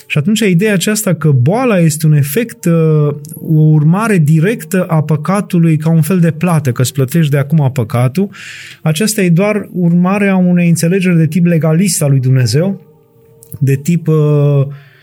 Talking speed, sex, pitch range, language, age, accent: 160 wpm, male, 140-180 Hz, Romanian, 30-49, native